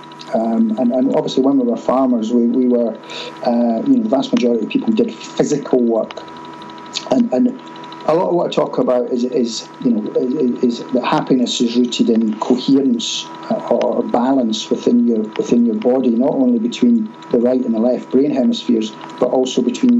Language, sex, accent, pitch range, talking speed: English, male, British, 110-130 Hz, 190 wpm